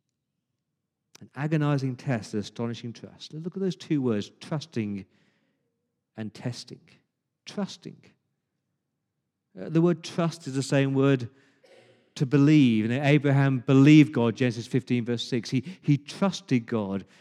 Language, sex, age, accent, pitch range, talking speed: English, male, 50-69, British, 135-180 Hz, 130 wpm